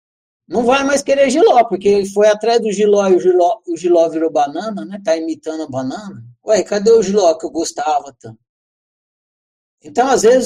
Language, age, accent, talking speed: Portuguese, 60-79, Brazilian, 195 wpm